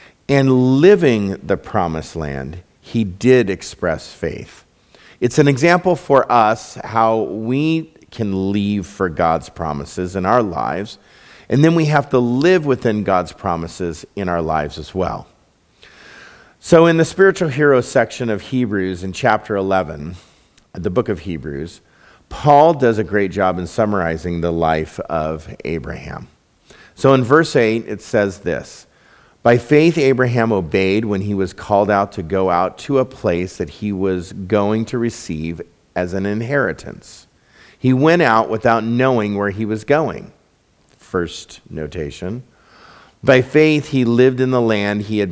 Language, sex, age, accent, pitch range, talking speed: English, male, 50-69, American, 95-130 Hz, 150 wpm